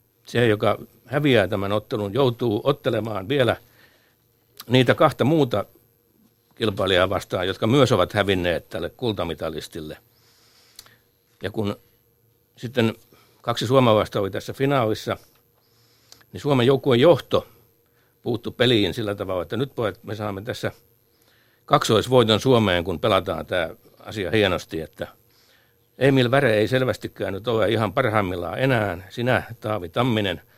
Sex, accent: male, native